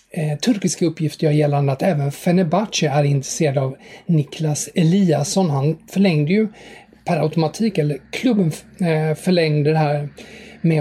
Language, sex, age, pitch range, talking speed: English, male, 30-49, 150-180 Hz, 130 wpm